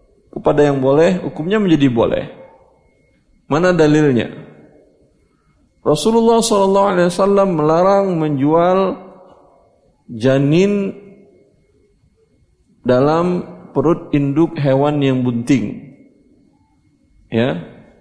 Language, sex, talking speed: Indonesian, male, 65 wpm